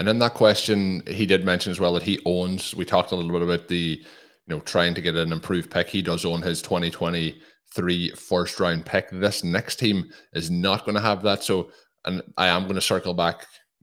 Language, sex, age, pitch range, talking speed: English, male, 20-39, 85-100 Hz, 230 wpm